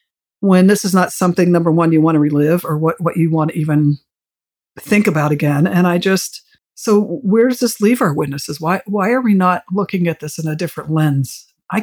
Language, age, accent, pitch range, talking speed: English, 50-69, American, 160-195 Hz, 225 wpm